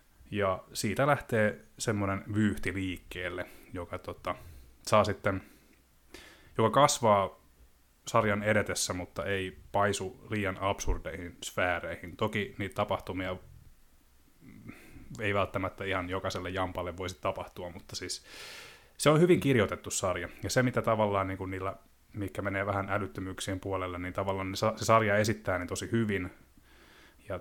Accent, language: native, Finnish